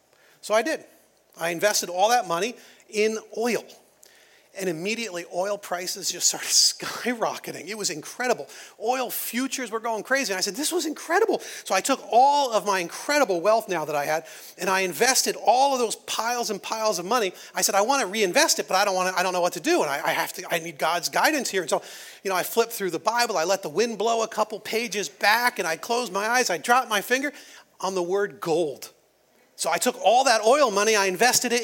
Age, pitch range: 40-59, 200-265 Hz